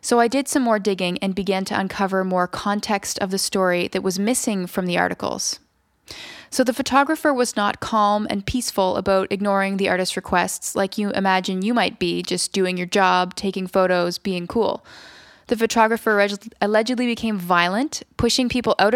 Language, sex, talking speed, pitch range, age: English, female, 175 wpm, 190-220 Hz, 20-39